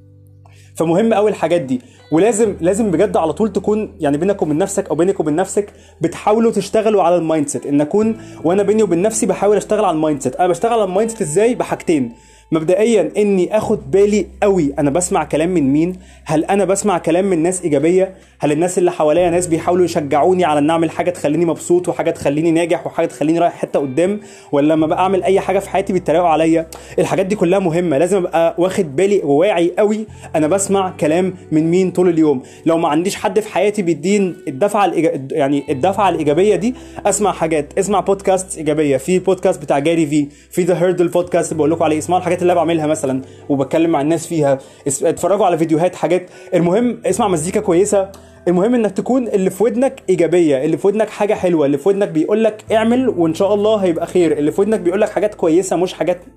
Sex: male